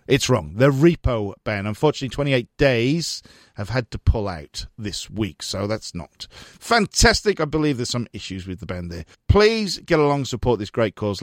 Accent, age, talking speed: British, 40-59, 185 wpm